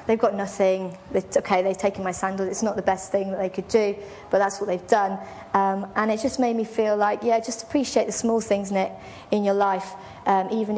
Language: English